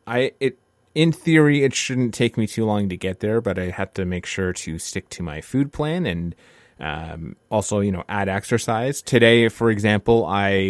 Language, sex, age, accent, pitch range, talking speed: English, male, 30-49, American, 95-115 Hz, 200 wpm